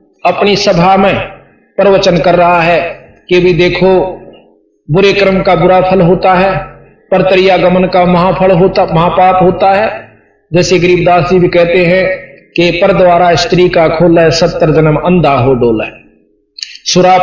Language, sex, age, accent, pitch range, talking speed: Hindi, male, 50-69, native, 160-195 Hz, 145 wpm